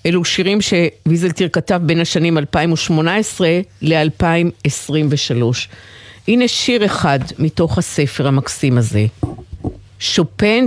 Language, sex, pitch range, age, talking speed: Hebrew, female, 125-185 Hz, 50-69, 90 wpm